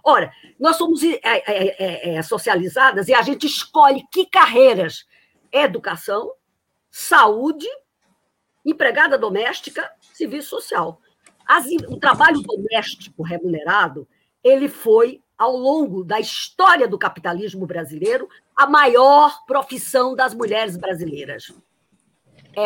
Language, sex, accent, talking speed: Portuguese, female, Brazilian, 90 wpm